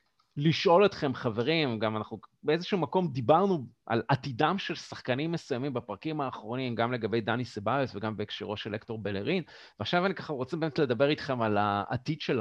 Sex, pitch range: male, 115-155 Hz